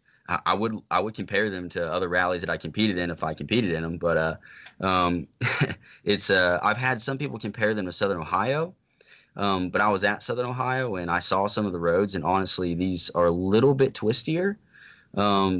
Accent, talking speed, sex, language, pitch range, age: American, 210 wpm, male, English, 85-100 Hz, 20-39